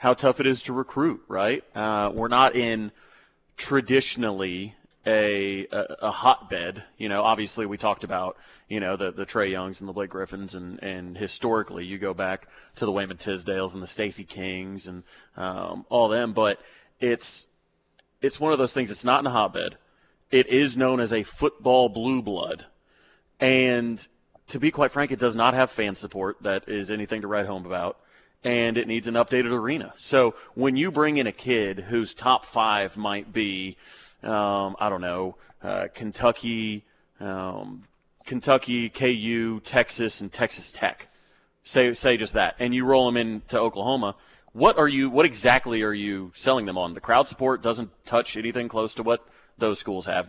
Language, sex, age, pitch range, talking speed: English, male, 30-49, 100-125 Hz, 180 wpm